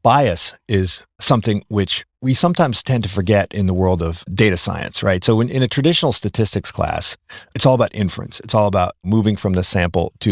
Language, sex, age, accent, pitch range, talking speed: English, male, 50-69, American, 90-125 Hz, 205 wpm